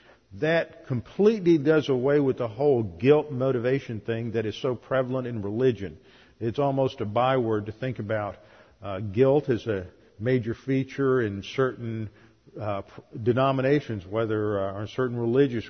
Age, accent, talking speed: 50-69, American, 155 wpm